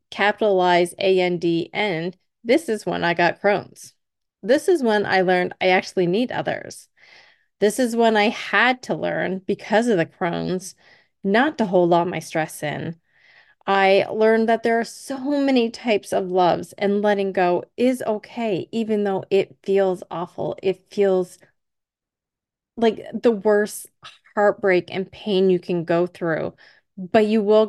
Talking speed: 160 wpm